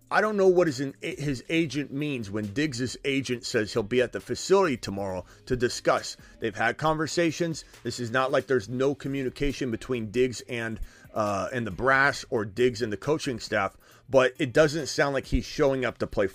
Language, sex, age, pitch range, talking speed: English, male, 30-49, 125-175 Hz, 190 wpm